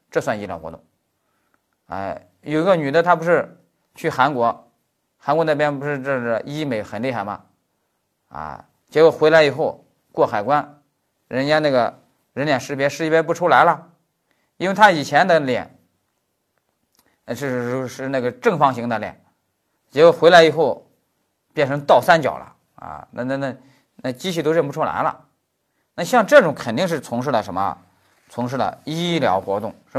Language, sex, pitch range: Chinese, male, 135-180 Hz